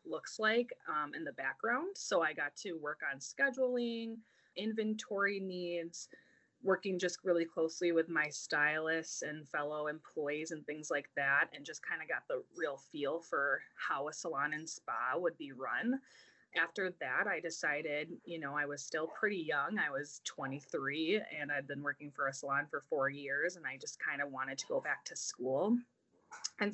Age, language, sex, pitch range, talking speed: 20-39, English, female, 155-200 Hz, 185 wpm